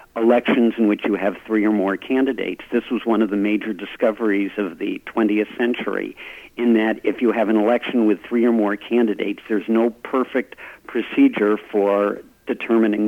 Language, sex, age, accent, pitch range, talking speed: English, male, 50-69, American, 105-120 Hz, 175 wpm